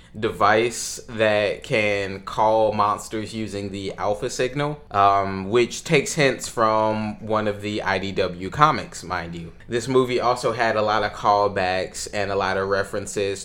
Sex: male